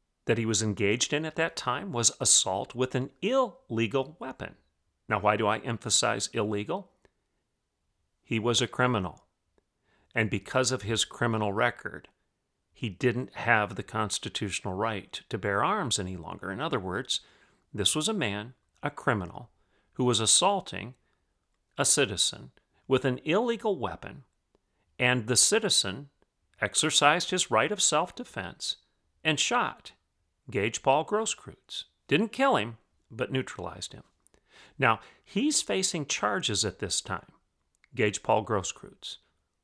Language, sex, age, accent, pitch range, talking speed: English, male, 40-59, American, 105-155 Hz, 135 wpm